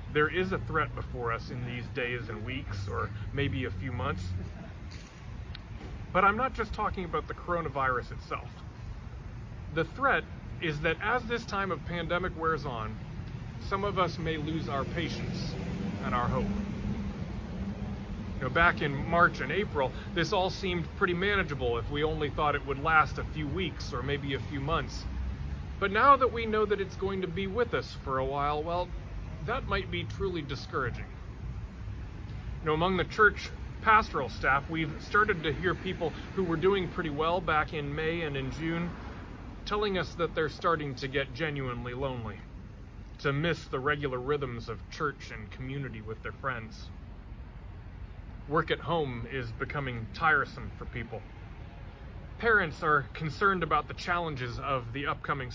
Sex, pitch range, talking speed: male, 110-165 Hz, 165 wpm